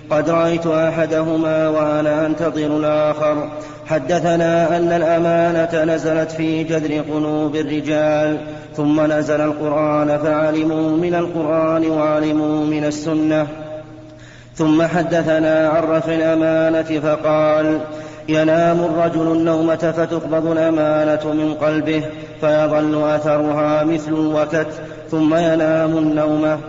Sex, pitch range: male, 155-160 Hz